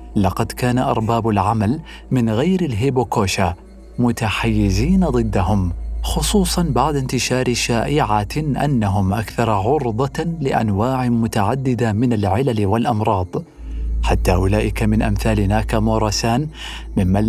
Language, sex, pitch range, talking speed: Arabic, male, 100-125 Hz, 95 wpm